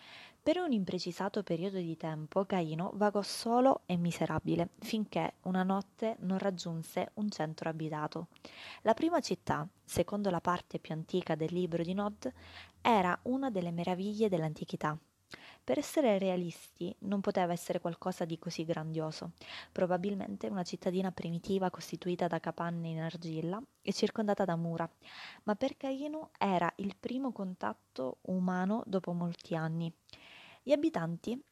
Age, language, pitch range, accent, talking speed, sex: 20-39, Italian, 170-210 Hz, native, 135 wpm, female